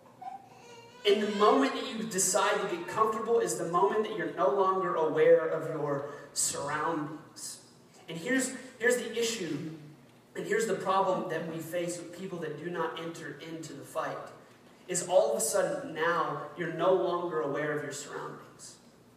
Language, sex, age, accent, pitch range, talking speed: English, male, 30-49, American, 160-205 Hz, 170 wpm